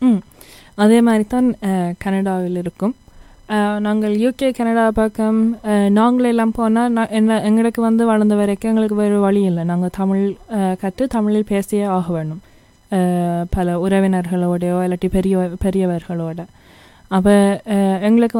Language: Tamil